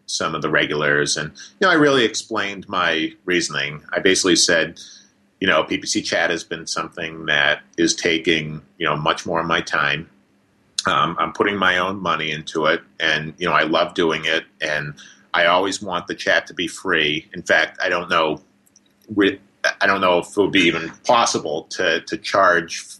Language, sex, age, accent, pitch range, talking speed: English, male, 40-59, American, 80-95 Hz, 190 wpm